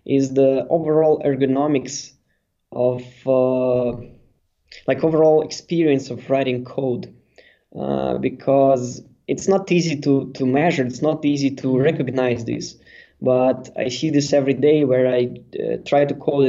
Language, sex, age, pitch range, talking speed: English, male, 20-39, 125-145 Hz, 140 wpm